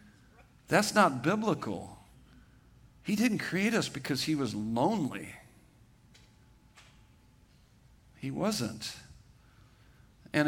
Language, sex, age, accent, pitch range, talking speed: English, male, 50-69, American, 130-165 Hz, 80 wpm